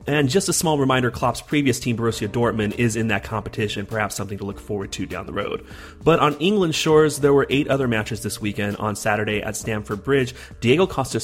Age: 30-49